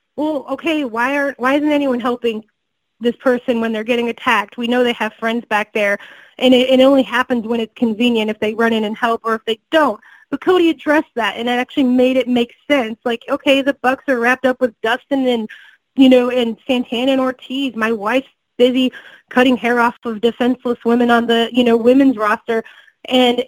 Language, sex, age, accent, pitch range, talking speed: English, female, 20-39, American, 235-275 Hz, 210 wpm